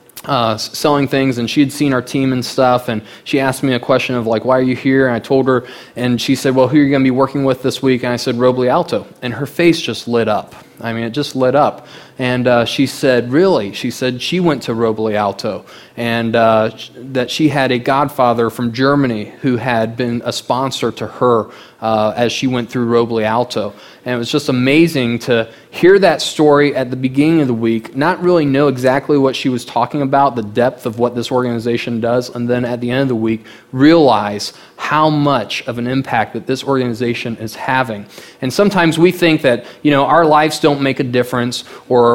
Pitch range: 120-145 Hz